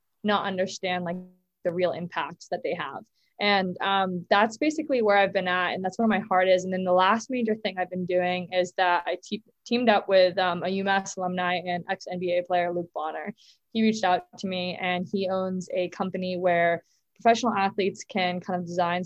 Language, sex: English, female